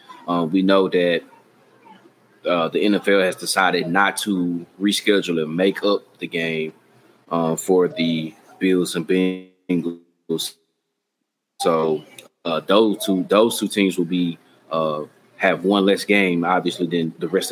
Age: 20-39